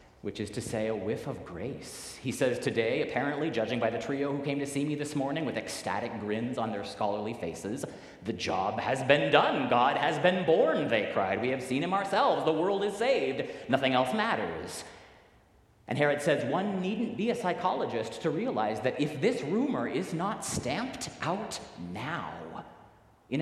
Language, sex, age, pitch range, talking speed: English, male, 40-59, 95-145 Hz, 185 wpm